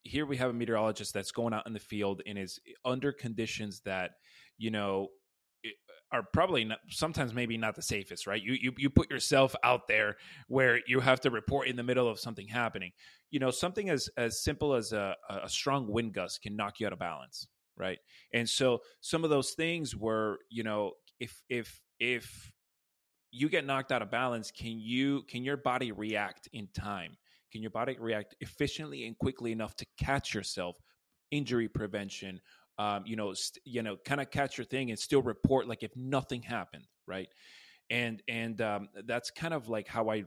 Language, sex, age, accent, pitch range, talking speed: English, male, 30-49, American, 105-130 Hz, 195 wpm